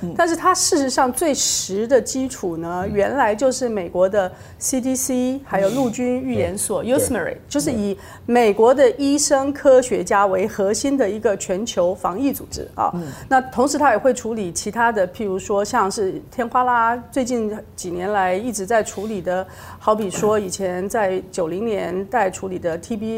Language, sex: Chinese, female